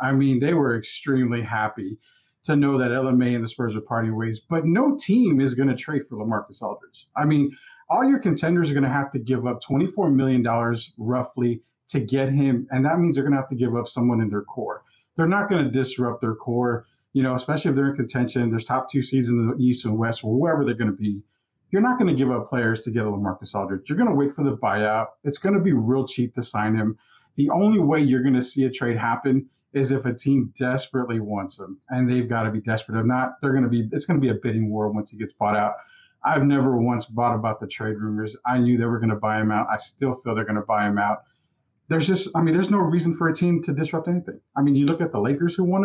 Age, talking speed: 40-59, 260 wpm